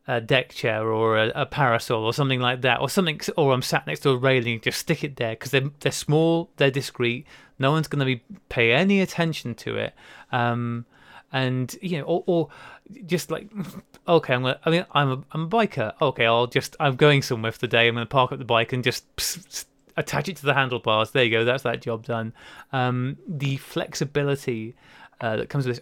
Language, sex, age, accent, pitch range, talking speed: English, male, 30-49, British, 125-155 Hz, 230 wpm